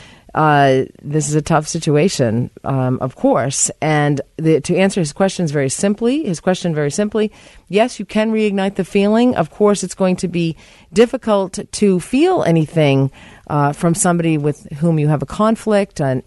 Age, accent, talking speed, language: 40-59, American, 175 wpm, English